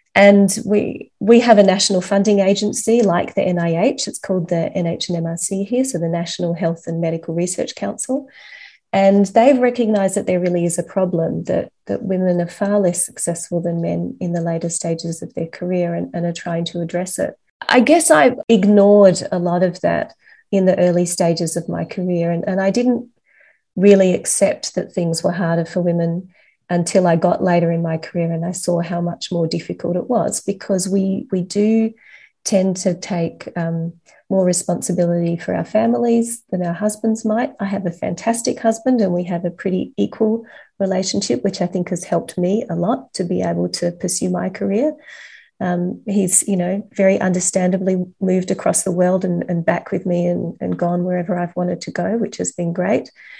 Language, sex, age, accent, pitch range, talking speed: English, female, 30-49, Australian, 175-205 Hz, 190 wpm